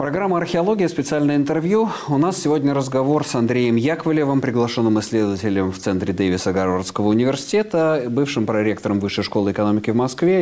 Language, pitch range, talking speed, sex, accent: Russian, 100-145 Hz, 145 wpm, male, native